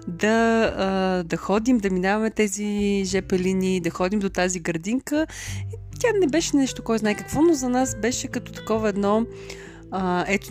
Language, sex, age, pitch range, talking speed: Bulgarian, female, 30-49, 175-215 Hz, 165 wpm